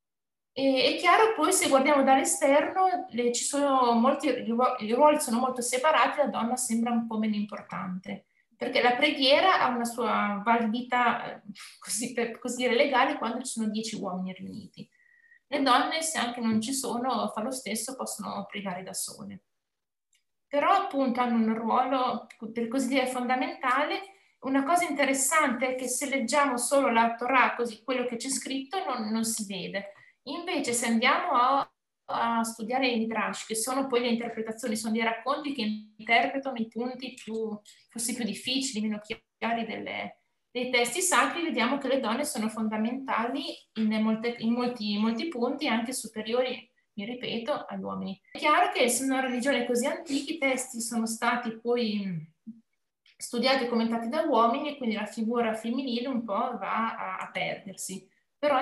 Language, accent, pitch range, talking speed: Italian, native, 225-270 Hz, 160 wpm